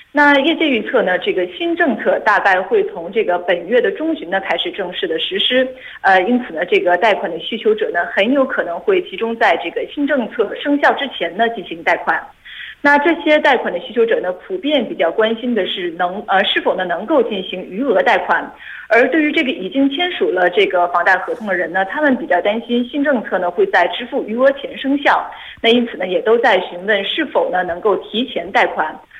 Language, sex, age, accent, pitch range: Korean, female, 30-49, Chinese, 195-305 Hz